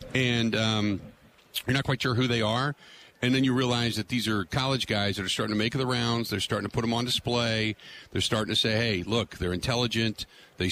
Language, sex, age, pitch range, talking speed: English, male, 50-69, 100-120 Hz, 230 wpm